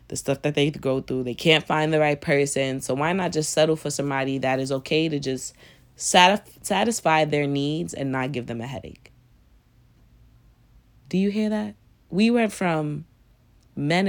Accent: American